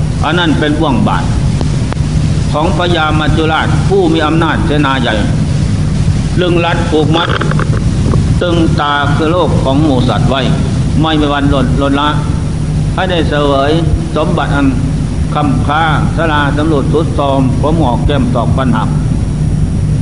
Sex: male